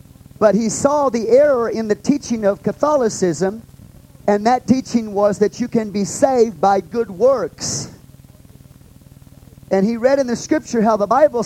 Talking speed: 160 wpm